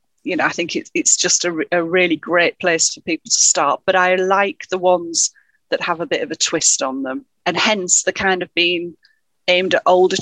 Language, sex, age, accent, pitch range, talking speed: English, female, 40-59, British, 165-235 Hz, 230 wpm